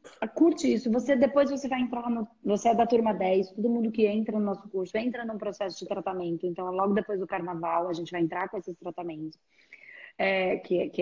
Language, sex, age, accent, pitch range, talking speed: Portuguese, female, 20-39, Brazilian, 185-230 Hz, 220 wpm